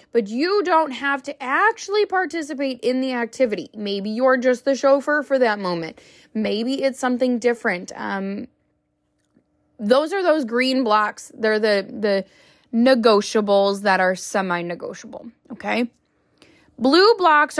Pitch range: 210-275 Hz